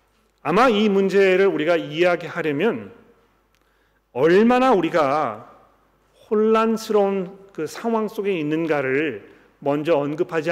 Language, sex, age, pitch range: Korean, male, 40-59, 150-195 Hz